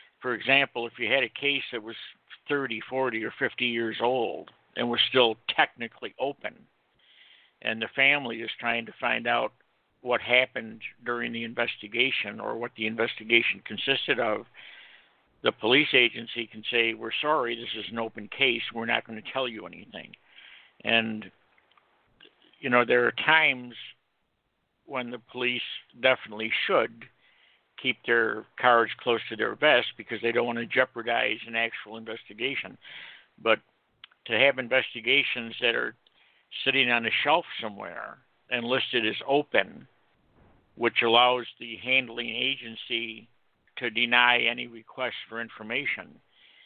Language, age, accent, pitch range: English, 60-79, American, 115-125 Hz